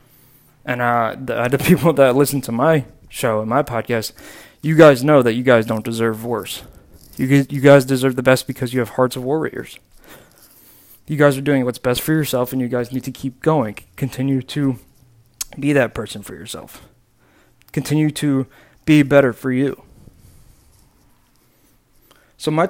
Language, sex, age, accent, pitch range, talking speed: English, male, 20-39, American, 120-140 Hz, 170 wpm